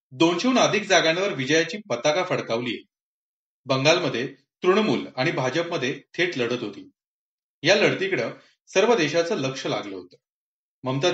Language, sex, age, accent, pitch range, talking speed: Marathi, male, 30-49, native, 130-195 Hz, 120 wpm